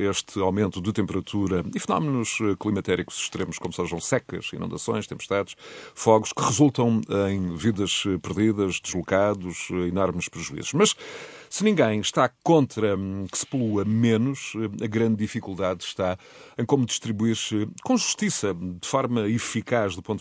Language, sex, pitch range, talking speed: Portuguese, male, 90-115 Hz, 130 wpm